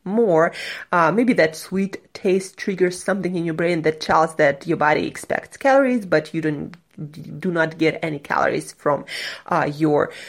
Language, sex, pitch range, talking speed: English, female, 160-205 Hz, 170 wpm